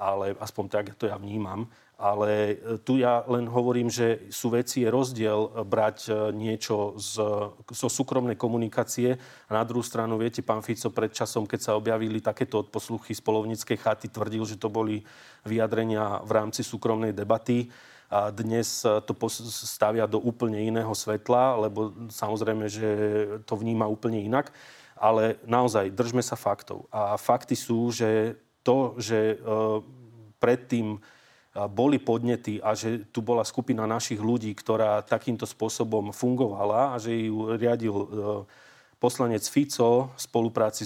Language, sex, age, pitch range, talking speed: Slovak, male, 30-49, 110-120 Hz, 140 wpm